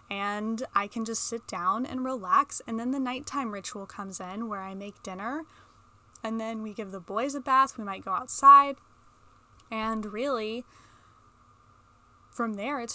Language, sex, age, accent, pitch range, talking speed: English, female, 10-29, American, 205-250 Hz, 165 wpm